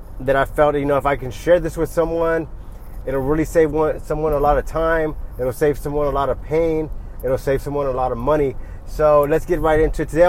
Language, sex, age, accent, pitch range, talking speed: English, male, 20-39, American, 130-155 Hz, 245 wpm